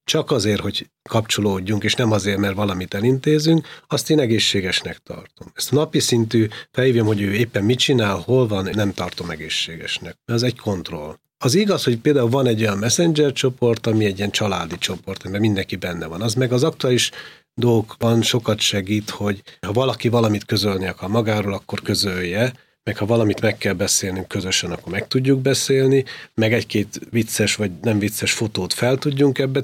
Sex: male